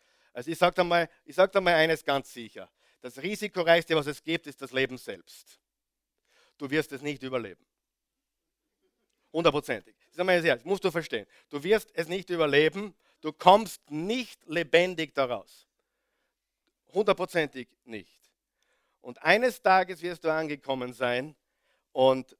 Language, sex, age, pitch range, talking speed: German, male, 50-69, 140-195 Hz, 130 wpm